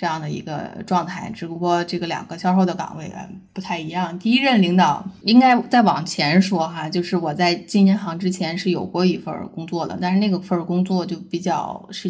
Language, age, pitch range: Chinese, 20-39, 170-195 Hz